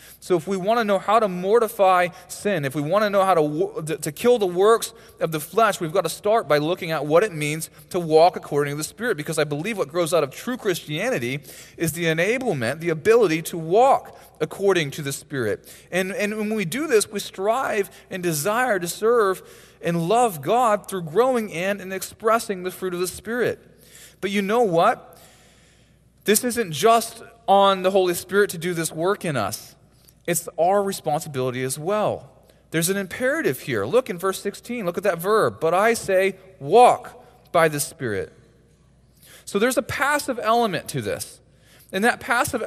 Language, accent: English, American